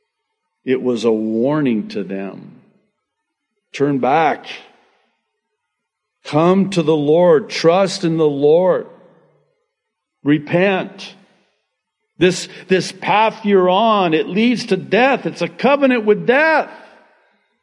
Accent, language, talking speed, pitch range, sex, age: American, English, 105 wpm, 160-225 Hz, male, 50-69